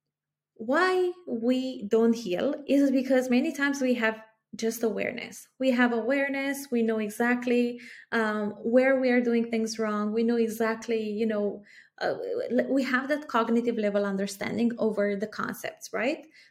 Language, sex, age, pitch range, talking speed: English, female, 20-39, 215-260 Hz, 150 wpm